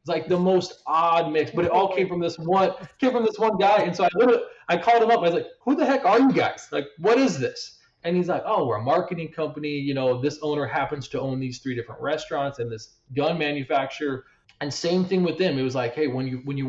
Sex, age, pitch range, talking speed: male, 20-39, 125-165 Hz, 265 wpm